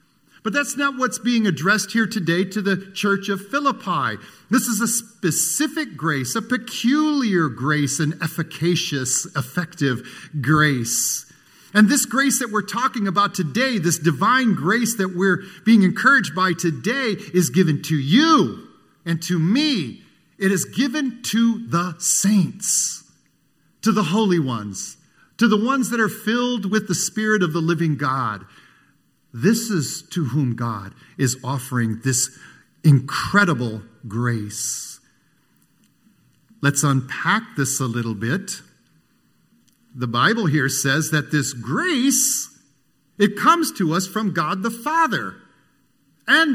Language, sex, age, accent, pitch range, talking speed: English, male, 50-69, American, 145-225 Hz, 135 wpm